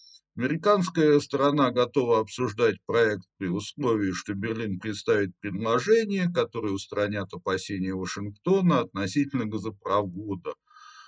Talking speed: 90 wpm